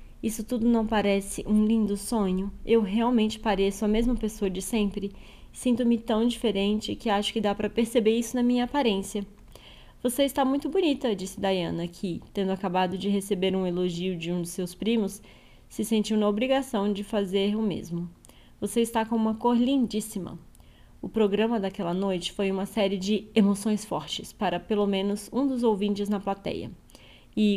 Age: 10-29